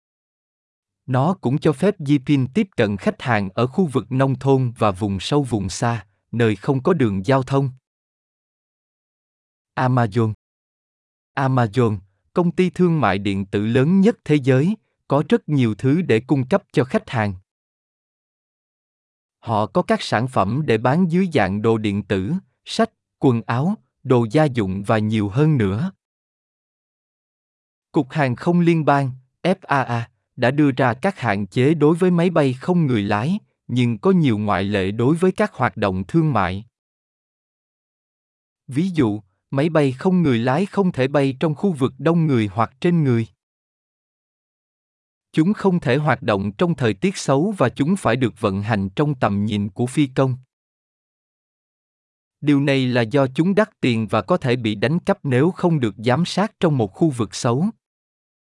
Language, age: Vietnamese, 20-39